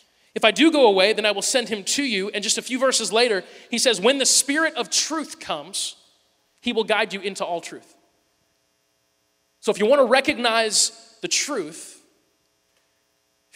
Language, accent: English, American